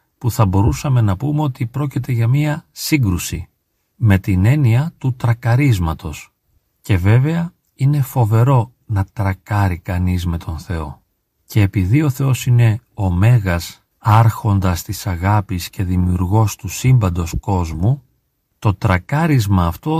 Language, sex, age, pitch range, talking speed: Greek, male, 40-59, 100-135 Hz, 130 wpm